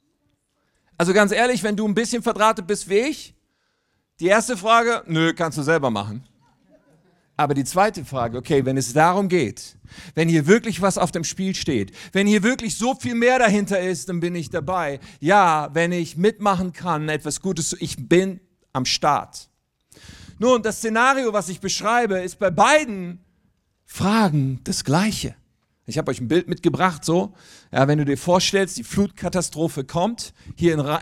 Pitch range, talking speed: 145-210 Hz, 170 wpm